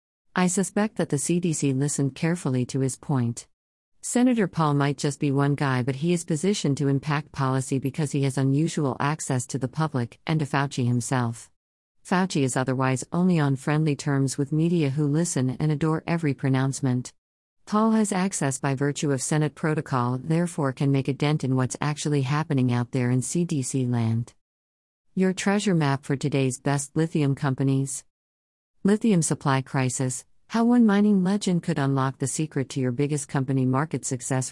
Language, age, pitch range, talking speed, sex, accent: English, 50-69, 130-160 Hz, 170 wpm, female, American